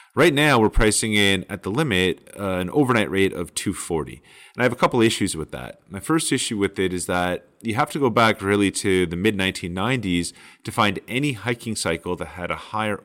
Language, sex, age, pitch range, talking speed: English, male, 30-49, 90-120 Hz, 220 wpm